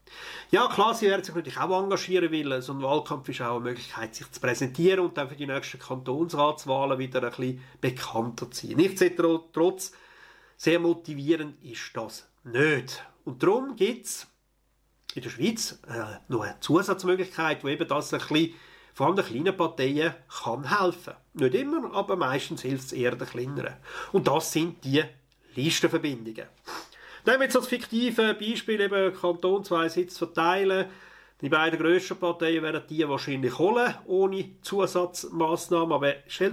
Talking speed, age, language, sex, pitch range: 160 wpm, 40-59, German, male, 140-190 Hz